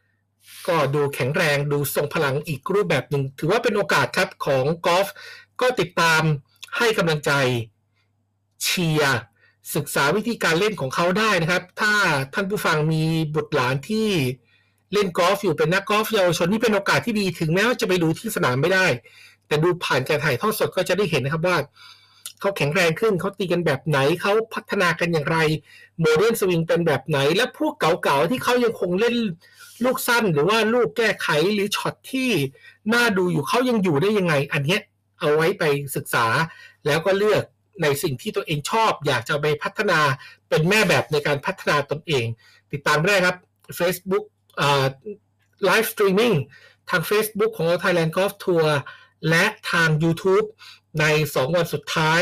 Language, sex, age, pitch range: Thai, male, 60-79, 145-210 Hz